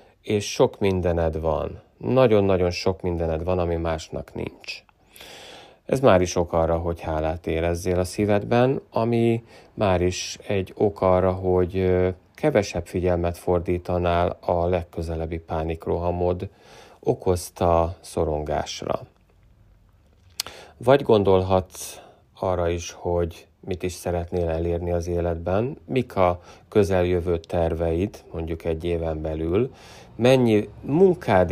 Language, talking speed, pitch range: Hungarian, 110 wpm, 85-95 Hz